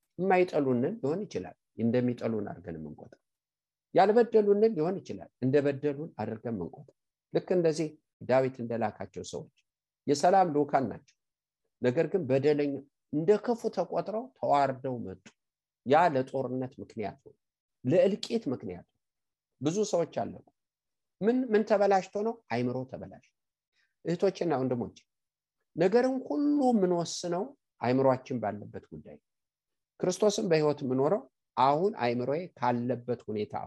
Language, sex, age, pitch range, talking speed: English, male, 50-69, 125-190 Hz, 125 wpm